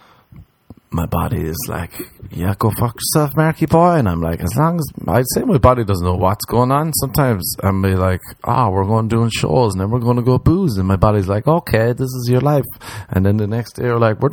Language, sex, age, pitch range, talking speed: English, male, 30-49, 105-155 Hz, 245 wpm